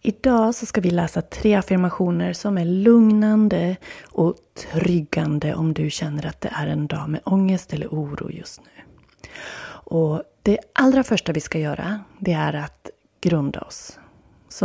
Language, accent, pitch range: Swedish, native, 160-195 Hz